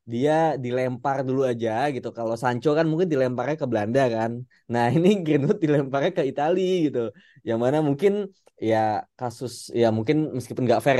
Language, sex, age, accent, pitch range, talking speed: Indonesian, male, 20-39, native, 120-155 Hz, 165 wpm